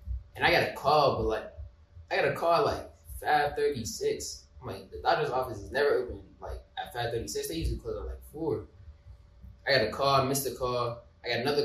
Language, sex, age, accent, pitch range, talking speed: English, male, 20-39, American, 105-155 Hz, 230 wpm